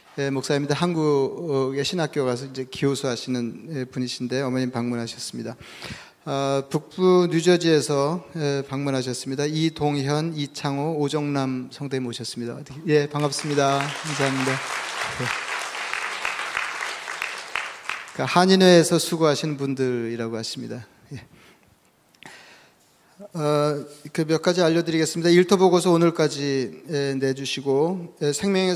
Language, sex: Korean, male